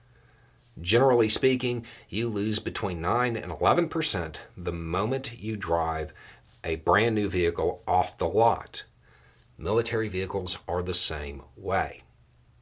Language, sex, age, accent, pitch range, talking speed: English, male, 40-59, American, 95-120 Hz, 125 wpm